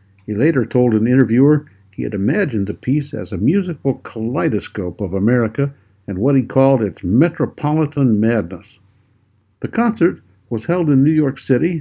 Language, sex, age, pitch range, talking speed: English, male, 60-79, 105-140 Hz, 160 wpm